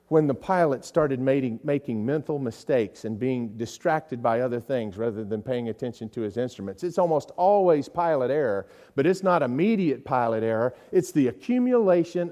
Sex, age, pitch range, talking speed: male, 40-59, 90-150 Hz, 165 wpm